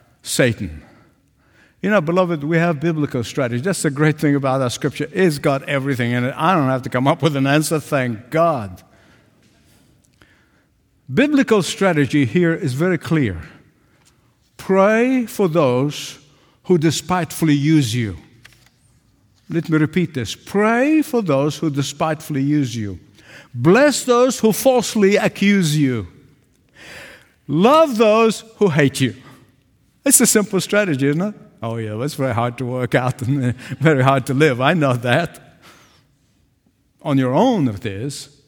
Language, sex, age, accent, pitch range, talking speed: English, male, 60-79, American, 125-180 Hz, 150 wpm